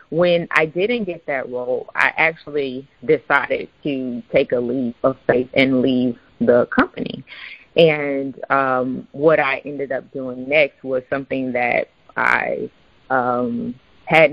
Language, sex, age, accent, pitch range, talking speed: English, female, 30-49, American, 130-160 Hz, 140 wpm